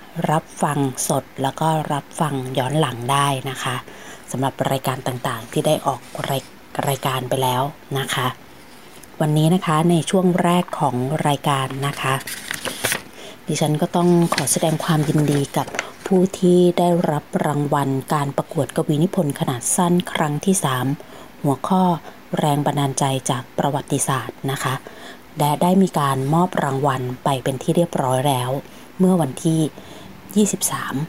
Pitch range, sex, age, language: 140-170 Hz, female, 20-39, Thai